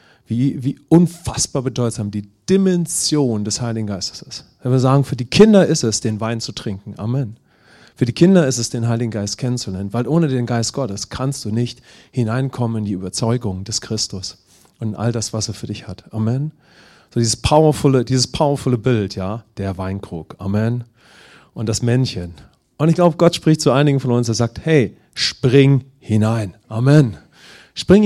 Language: English